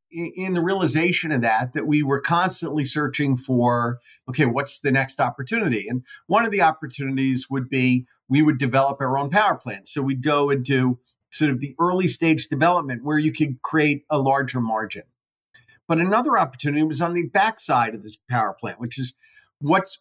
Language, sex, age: English, male, 50-69